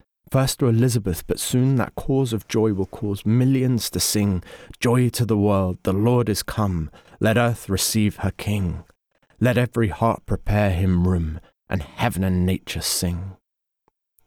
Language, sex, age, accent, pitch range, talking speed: English, male, 30-49, British, 90-110 Hz, 160 wpm